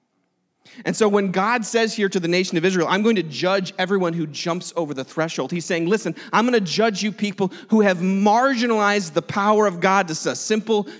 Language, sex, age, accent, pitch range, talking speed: English, male, 30-49, American, 135-200 Hz, 220 wpm